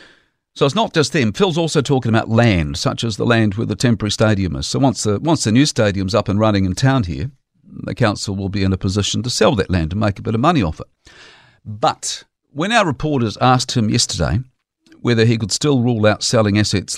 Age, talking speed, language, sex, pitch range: 50-69, 235 wpm, English, male, 100-130 Hz